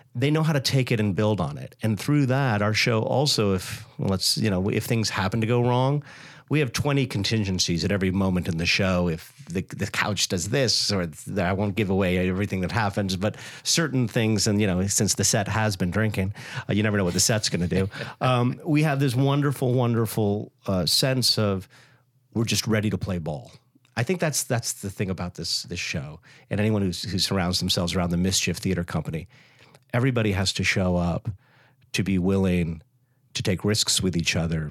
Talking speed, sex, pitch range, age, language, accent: 215 wpm, male, 95-130 Hz, 50-69, English, American